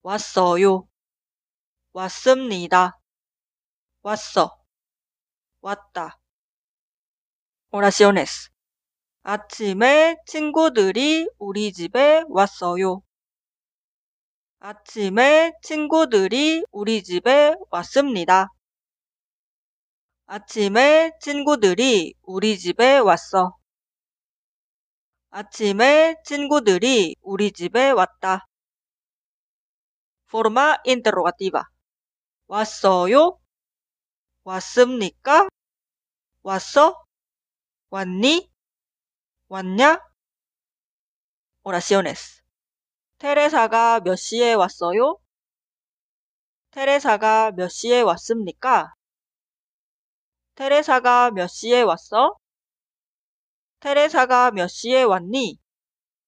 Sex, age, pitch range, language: female, 30-49, 190-285 Hz, Korean